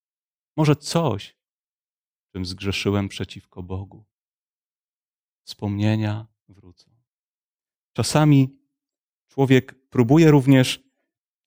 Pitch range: 105-150 Hz